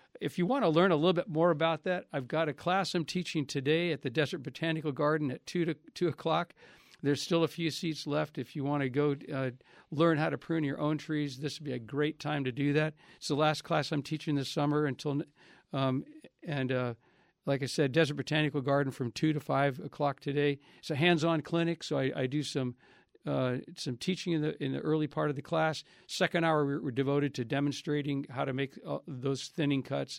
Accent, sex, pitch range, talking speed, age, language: American, male, 135-155 Hz, 230 wpm, 60-79, English